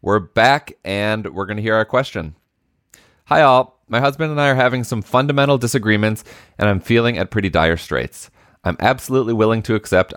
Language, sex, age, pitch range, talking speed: English, male, 30-49, 95-125 Hz, 190 wpm